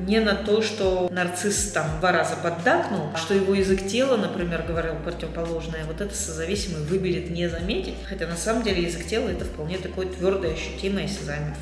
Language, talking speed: Russian, 180 wpm